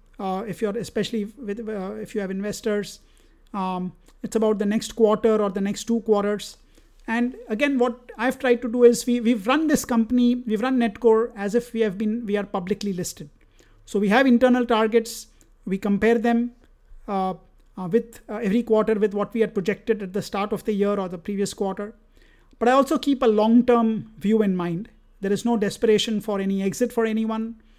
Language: English